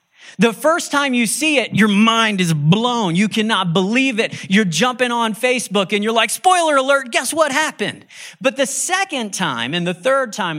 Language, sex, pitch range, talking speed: English, male, 190-255 Hz, 195 wpm